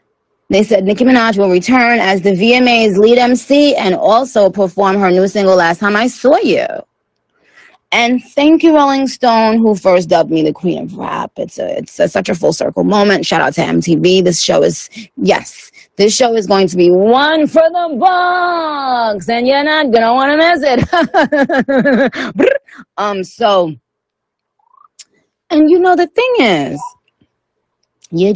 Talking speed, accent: 170 wpm, American